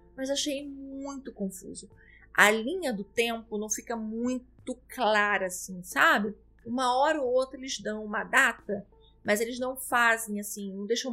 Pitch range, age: 205-260 Hz, 30-49